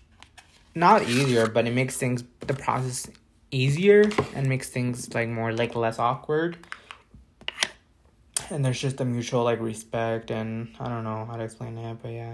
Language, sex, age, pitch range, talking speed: English, male, 20-39, 110-135 Hz, 165 wpm